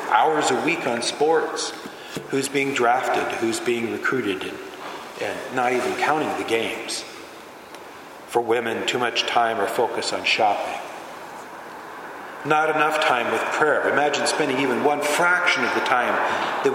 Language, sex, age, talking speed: English, male, 40-59, 145 wpm